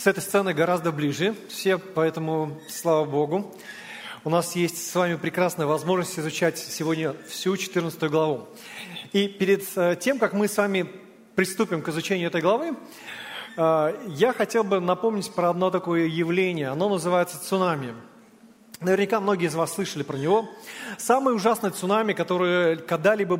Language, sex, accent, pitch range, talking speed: Russian, male, native, 170-210 Hz, 145 wpm